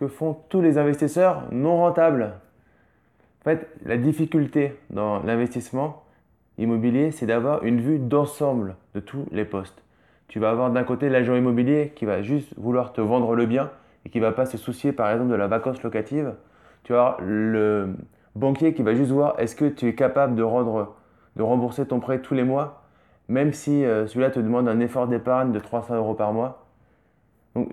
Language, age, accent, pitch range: French, 20-39, French, 115-145 Hz